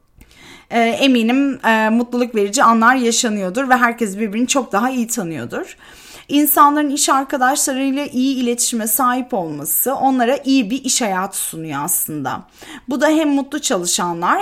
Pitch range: 235-285 Hz